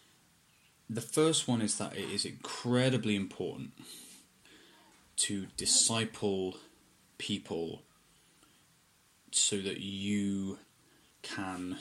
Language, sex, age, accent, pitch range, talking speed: English, male, 10-29, British, 95-110 Hz, 80 wpm